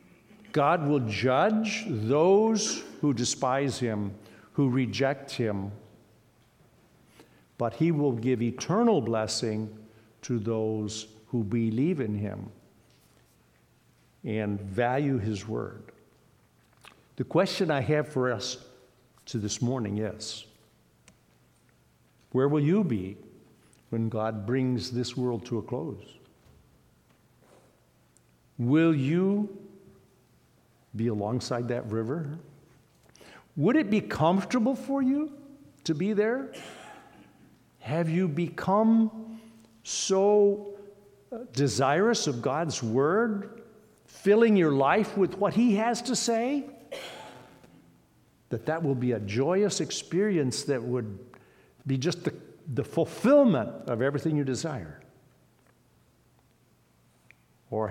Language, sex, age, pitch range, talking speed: English, male, 60-79, 115-185 Hz, 105 wpm